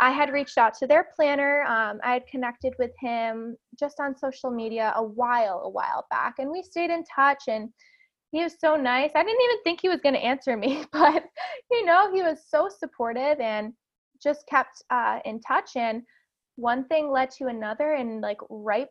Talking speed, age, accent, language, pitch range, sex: 205 wpm, 20-39, American, English, 230-330 Hz, female